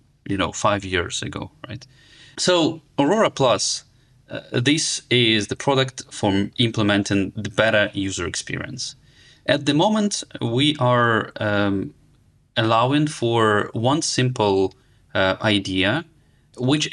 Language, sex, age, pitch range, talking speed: English, male, 30-49, 100-130 Hz, 115 wpm